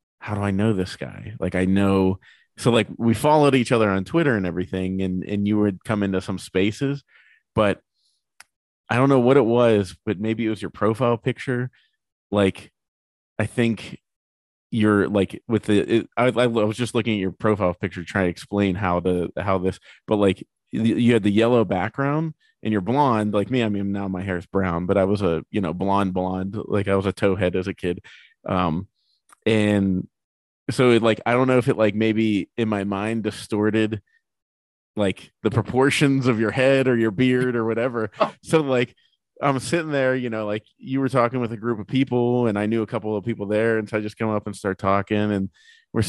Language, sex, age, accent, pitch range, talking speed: English, male, 30-49, American, 100-120 Hz, 210 wpm